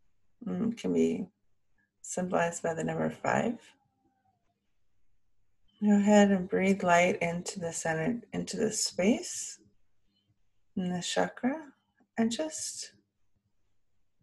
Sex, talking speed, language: female, 95 wpm, English